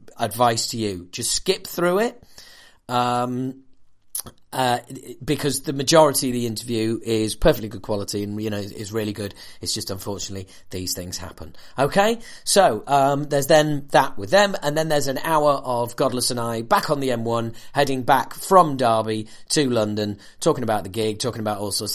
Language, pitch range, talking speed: English, 110-145 Hz, 180 wpm